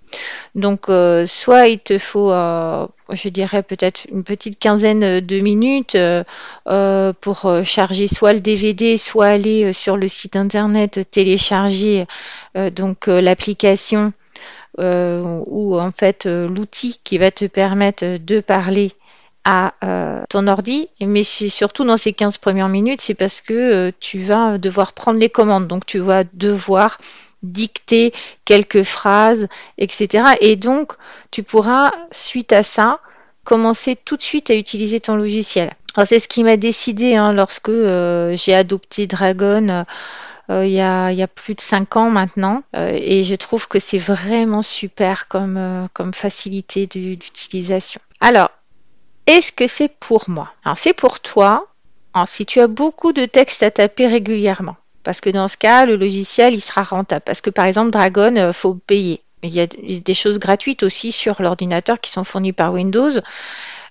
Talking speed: 165 wpm